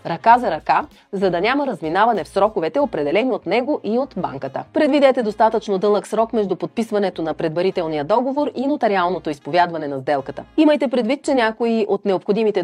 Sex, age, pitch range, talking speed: female, 30-49, 170-245 Hz, 165 wpm